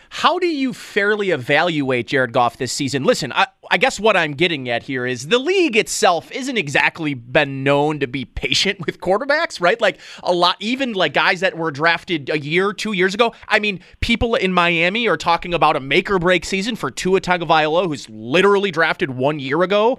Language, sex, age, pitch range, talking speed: English, male, 30-49, 150-210 Hz, 205 wpm